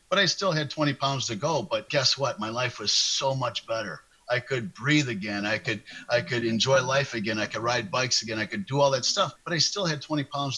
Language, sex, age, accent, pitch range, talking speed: English, male, 50-69, American, 120-150 Hz, 255 wpm